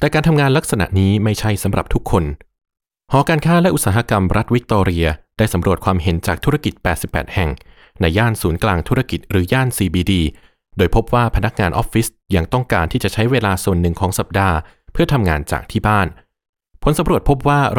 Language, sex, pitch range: Thai, male, 85-120 Hz